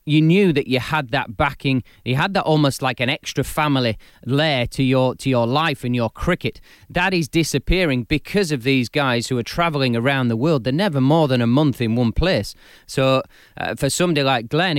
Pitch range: 125-155 Hz